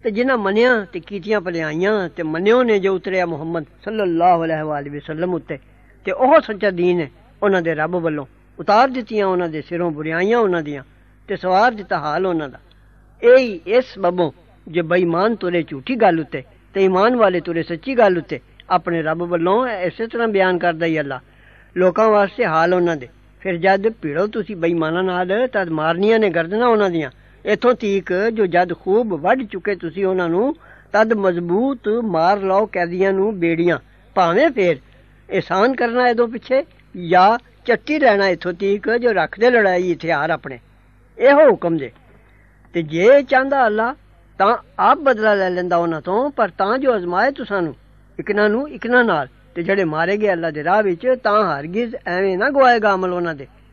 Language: English